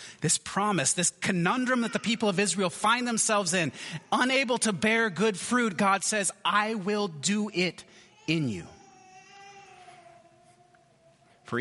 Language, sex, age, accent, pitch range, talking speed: English, male, 30-49, American, 150-225 Hz, 135 wpm